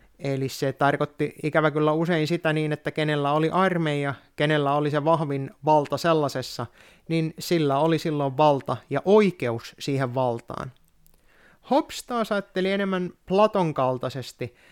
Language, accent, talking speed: Finnish, native, 135 wpm